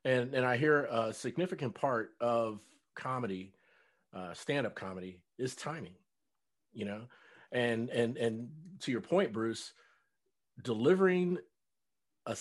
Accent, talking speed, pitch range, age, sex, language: American, 120 wpm, 110-145 Hz, 40-59, male, English